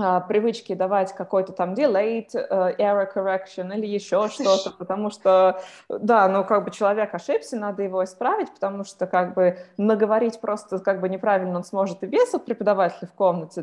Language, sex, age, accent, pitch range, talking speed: Russian, female, 20-39, native, 180-225 Hz, 165 wpm